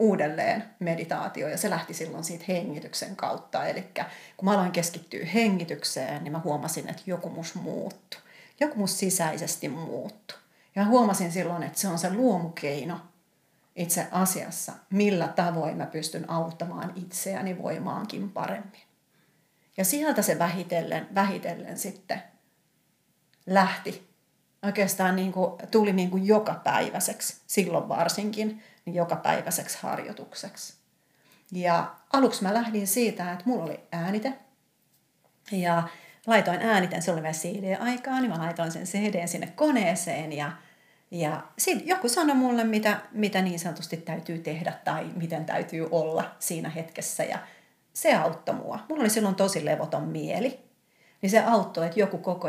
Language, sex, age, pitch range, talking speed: Finnish, female, 40-59, 165-210 Hz, 135 wpm